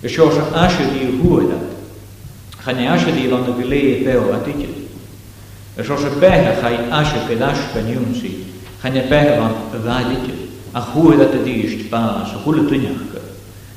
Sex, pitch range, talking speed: male, 105-140 Hz, 70 wpm